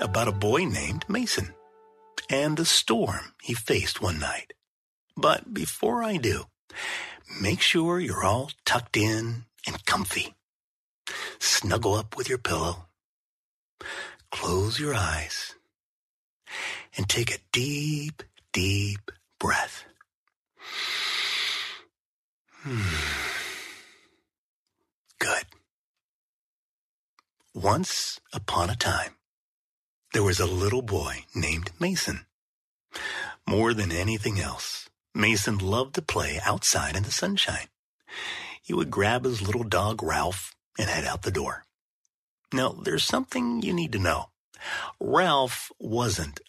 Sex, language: male, English